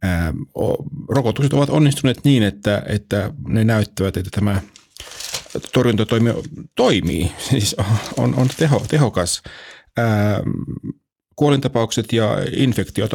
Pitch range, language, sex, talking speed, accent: 95-120 Hz, Finnish, male, 90 wpm, native